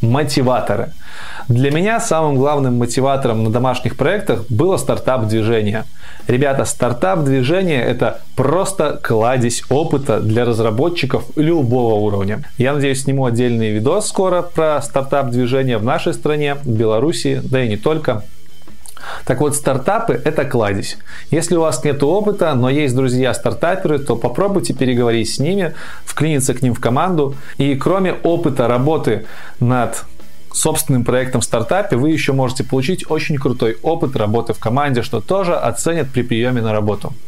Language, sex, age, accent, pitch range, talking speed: Russian, male, 20-39, native, 115-150 Hz, 145 wpm